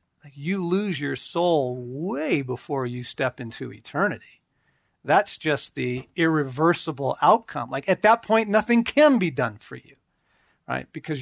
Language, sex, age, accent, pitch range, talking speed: English, male, 50-69, American, 135-170 Hz, 145 wpm